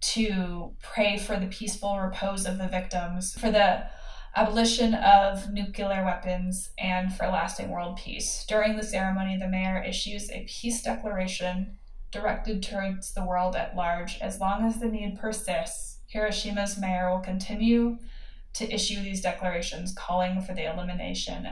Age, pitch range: 10-29, 180-210 Hz